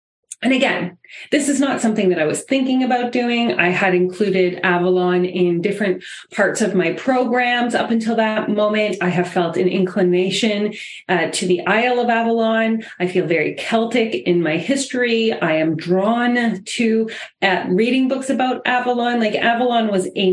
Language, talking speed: English, 170 wpm